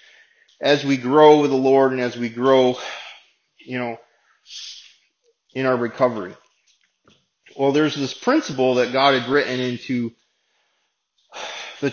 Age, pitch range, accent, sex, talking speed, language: 30-49, 125-140 Hz, American, male, 125 wpm, English